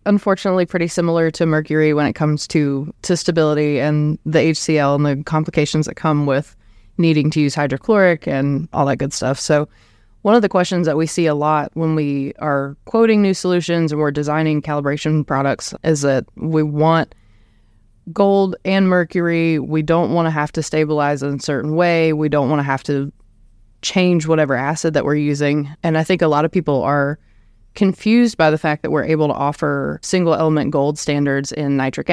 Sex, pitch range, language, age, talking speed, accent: female, 140-170 Hz, English, 20-39, 190 wpm, American